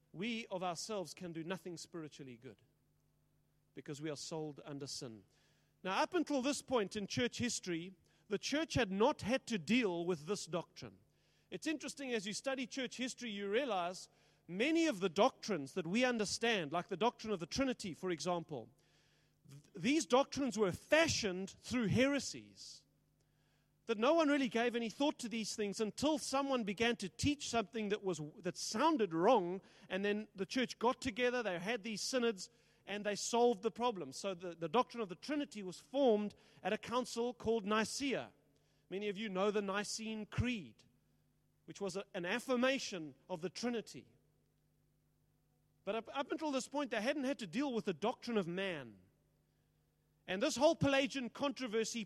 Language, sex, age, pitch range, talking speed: English, male, 40-59, 170-245 Hz, 170 wpm